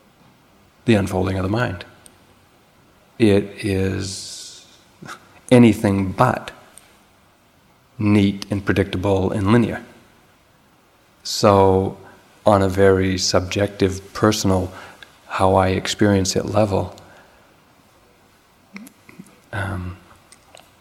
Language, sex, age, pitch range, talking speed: English, male, 40-59, 95-105 Hz, 75 wpm